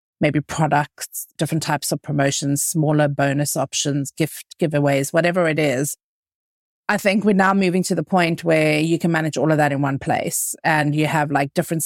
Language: English